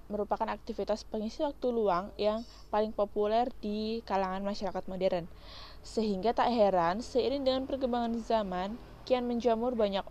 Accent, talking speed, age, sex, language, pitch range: native, 130 wpm, 20-39, female, Indonesian, 195-230 Hz